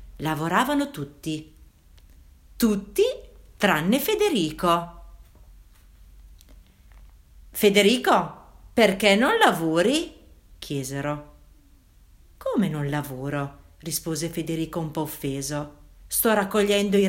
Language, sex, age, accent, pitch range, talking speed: Italian, female, 50-69, native, 140-215 Hz, 75 wpm